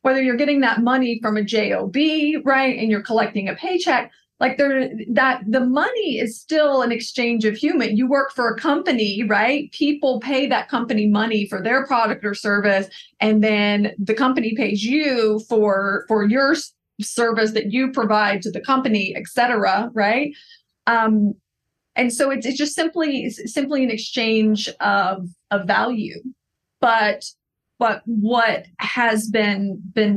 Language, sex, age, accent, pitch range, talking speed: English, female, 30-49, American, 210-255 Hz, 155 wpm